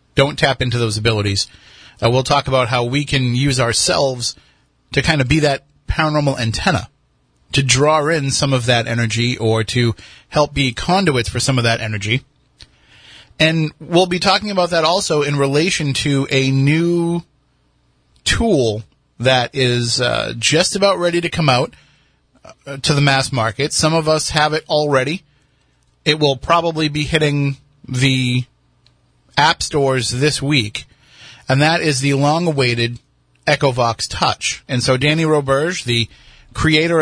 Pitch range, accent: 120-150 Hz, American